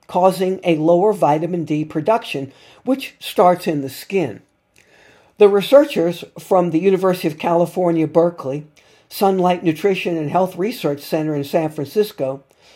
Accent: American